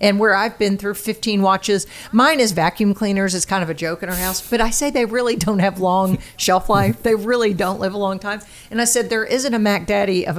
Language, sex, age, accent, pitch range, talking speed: English, female, 50-69, American, 190-235 Hz, 260 wpm